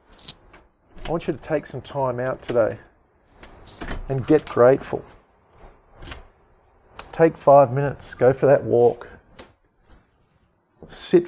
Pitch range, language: 115-135 Hz, English